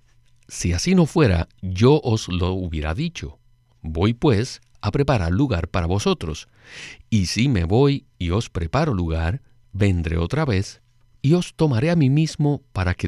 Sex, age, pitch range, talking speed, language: male, 50-69, 95-130 Hz, 160 wpm, Spanish